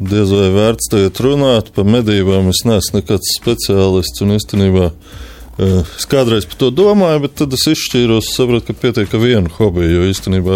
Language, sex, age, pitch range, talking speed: English, male, 20-39, 90-125 Hz, 150 wpm